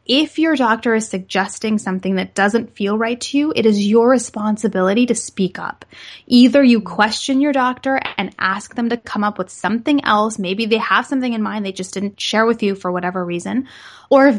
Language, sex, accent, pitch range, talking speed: English, female, American, 190-235 Hz, 210 wpm